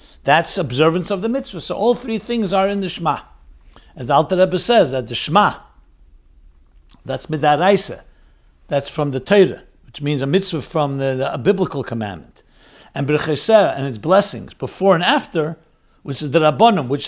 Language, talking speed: English, 175 wpm